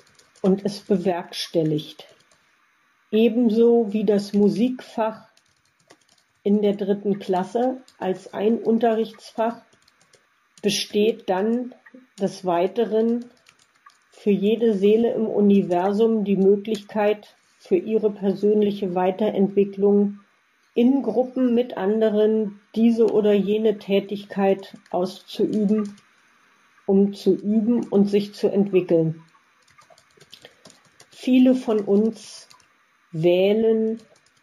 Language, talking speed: German, 85 wpm